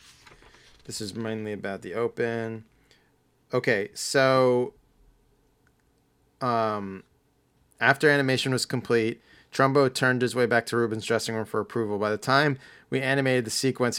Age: 30-49